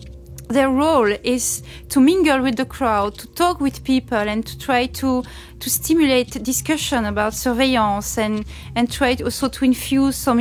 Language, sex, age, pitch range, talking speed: German, female, 30-49, 225-260 Hz, 160 wpm